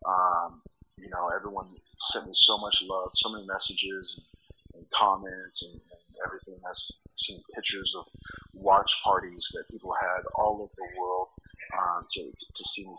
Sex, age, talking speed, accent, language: male, 30-49, 170 wpm, American, English